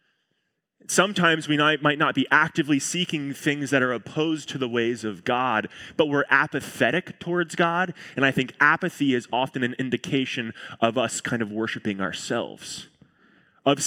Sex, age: male, 20-39